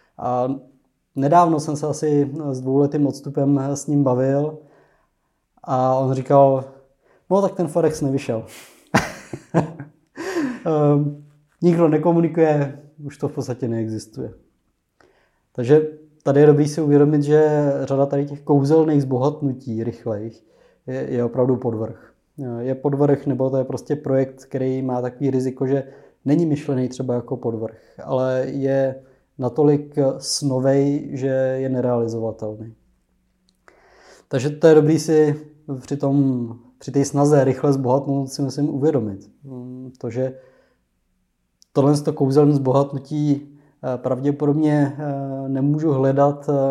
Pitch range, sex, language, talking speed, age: 130-145 Hz, male, Czech, 115 wpm, 20-39